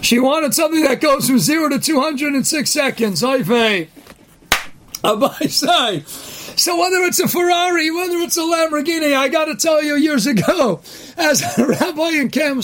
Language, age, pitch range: English, 40-59, 245-305 Hz